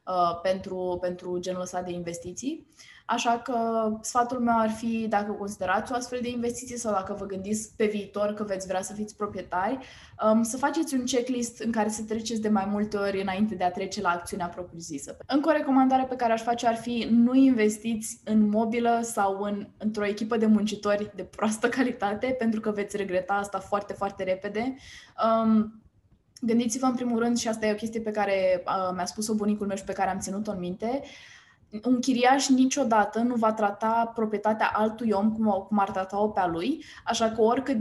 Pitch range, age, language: 200-235 Hz, 20-39, Romanian